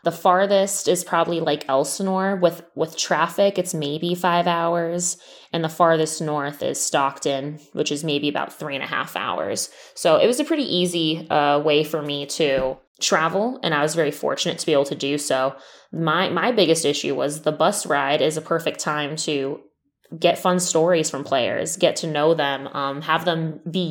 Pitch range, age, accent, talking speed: 145-175 Hz, 20-39, American, 195 wpm